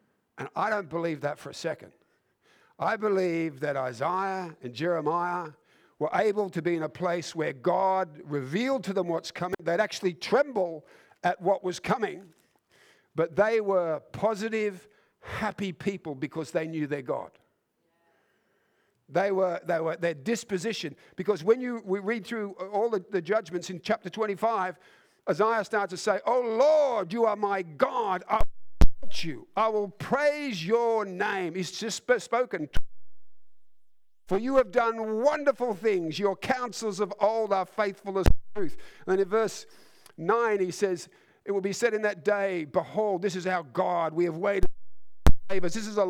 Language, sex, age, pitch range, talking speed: English, male, 50-69, 175-215 Hz, 165 wpm